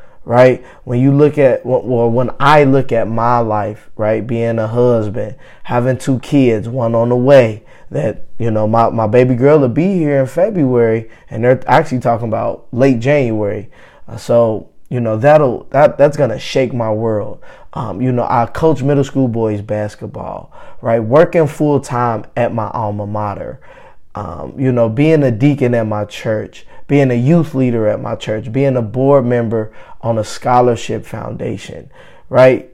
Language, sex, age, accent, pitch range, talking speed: English, male, 20-39, American, 110-130 Hz, 175 wpm